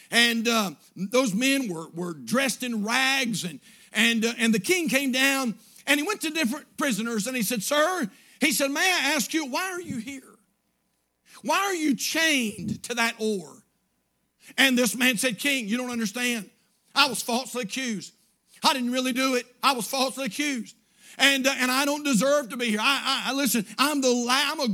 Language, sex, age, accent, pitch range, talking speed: English, male, 50-69, American, 230-280 Hz, 200 wpm